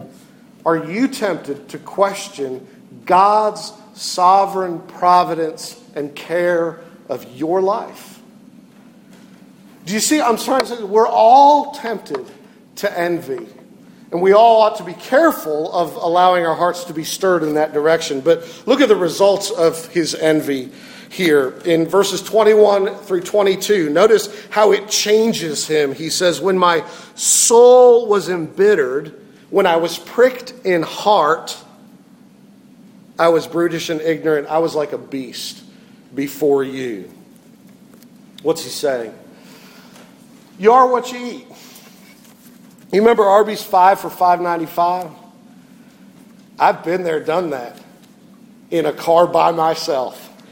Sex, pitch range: male, 170-230 Hz